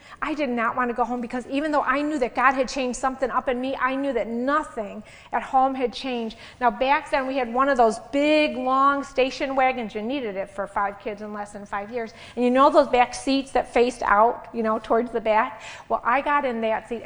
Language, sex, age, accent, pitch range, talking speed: English, female, 30-49, American, 225-275 Hz, 250 wpm